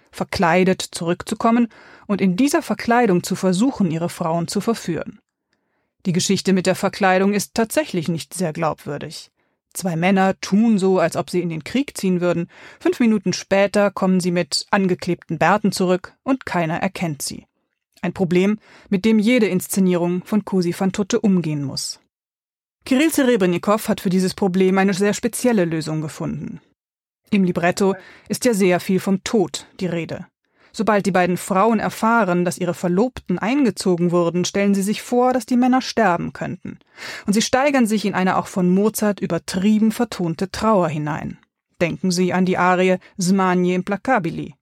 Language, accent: German, German